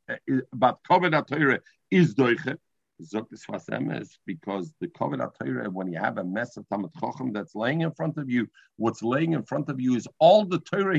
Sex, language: male, English